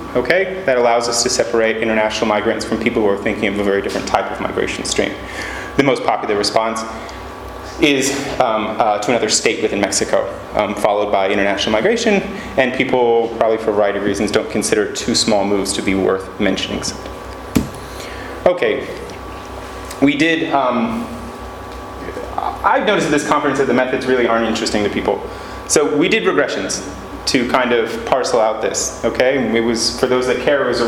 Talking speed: 180 wpm